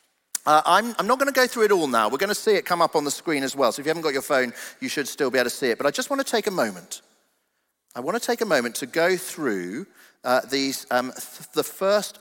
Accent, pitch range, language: British, 125-205 Hz, English